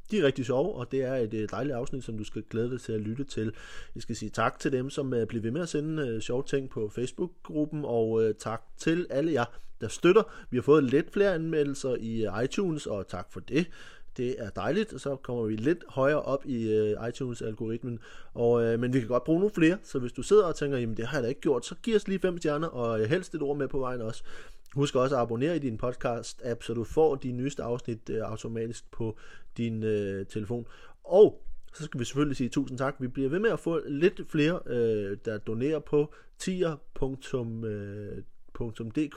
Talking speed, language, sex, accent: 215 wpm, Danish, male, native